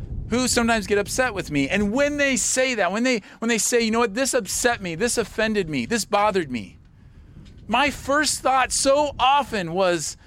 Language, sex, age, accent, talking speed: English, male, 40-59, American, 200 wpm